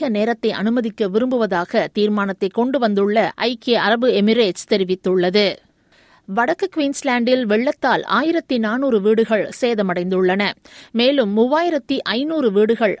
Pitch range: 210-255 Hz